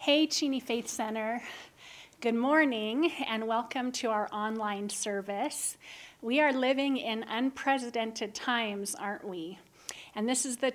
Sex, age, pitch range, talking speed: female, 30-49, 210-250 Hz, 135 wpm